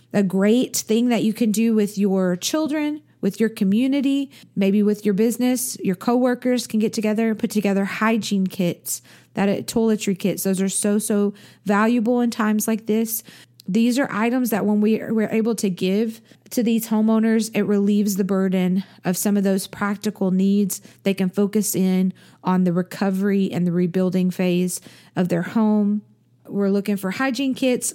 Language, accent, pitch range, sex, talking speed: English, American, 195-225 Hz, female, 180 wpm